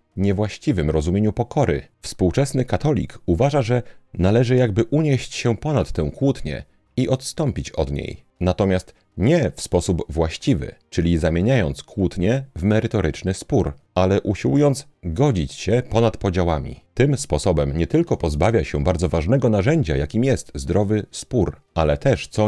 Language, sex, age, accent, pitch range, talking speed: Polish, male, 40-59, native, 85-125 Hz, 135 wpm